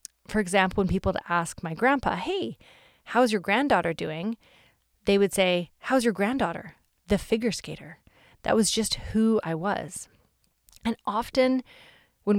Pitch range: 185-220 Hz